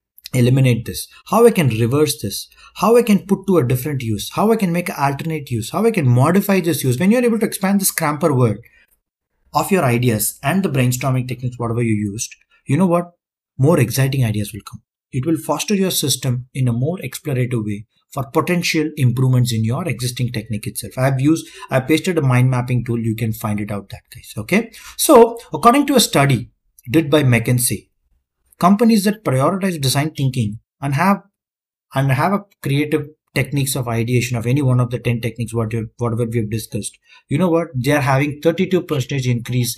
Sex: male